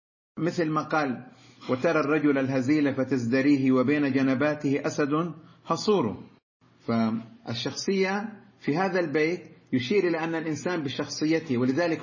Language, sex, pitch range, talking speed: Arabic, male, 140-180 Hz, 105 wpm